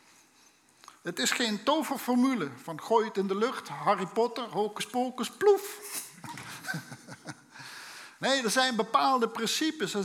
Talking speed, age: 125 wpm, 50-69